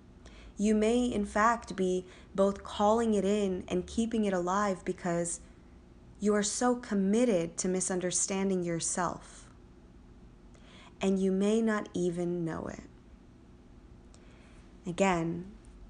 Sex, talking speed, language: female, 110 wpm, English